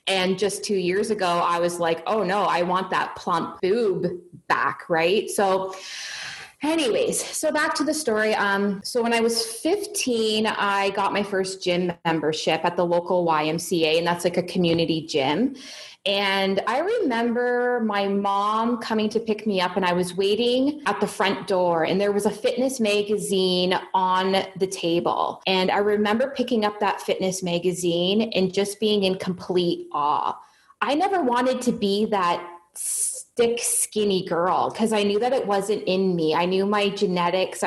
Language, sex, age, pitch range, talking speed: English, female, 20-39, 180-220 Hz, 170 wpm